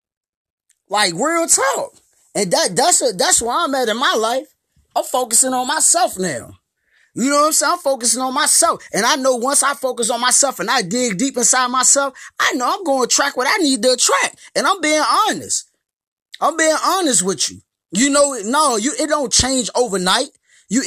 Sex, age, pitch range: male, 20-39, 195-270 Hz